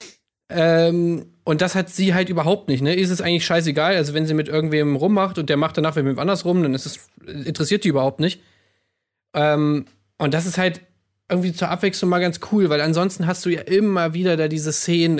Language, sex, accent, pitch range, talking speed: German, male, German, 140-180 Hz, 215 wpm